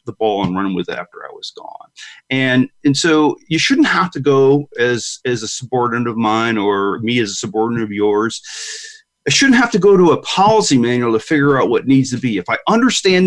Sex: male